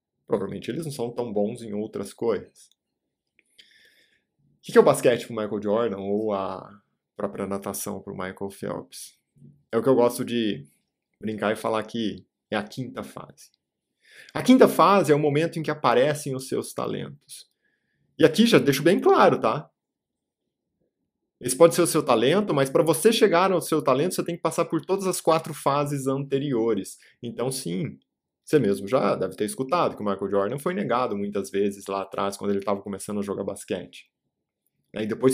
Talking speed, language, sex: 185 wpm, Portuguese, male